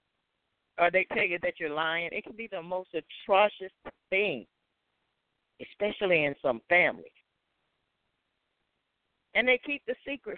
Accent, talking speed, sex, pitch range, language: American, 135 wpm, female, 145-200 Hz, English